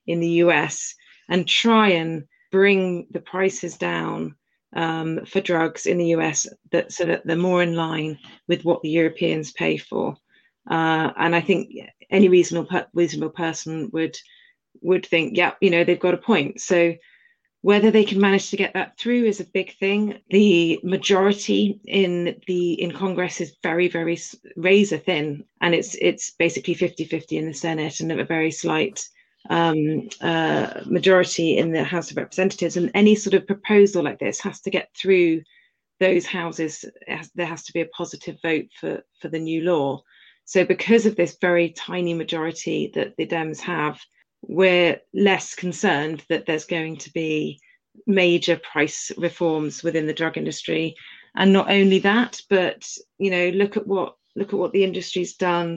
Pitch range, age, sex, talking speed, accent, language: 165-195 Hz, 30-49, female, 170 wpm, British, English